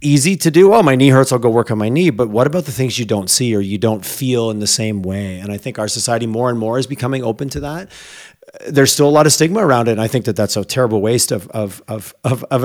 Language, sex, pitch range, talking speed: English, male, 115-145 Hz, 285 wpm